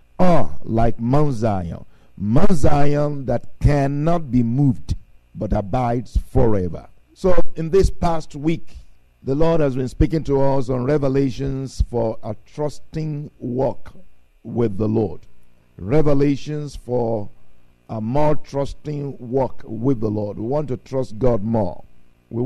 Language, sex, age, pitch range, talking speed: English, male, 50-69, 110-165 Hz, 135 wpm